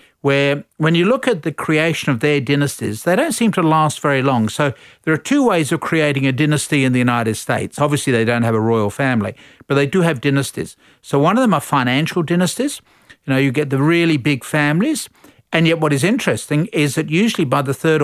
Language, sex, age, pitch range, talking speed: English, male, 50-69, 125-165 Hz, 225 wpm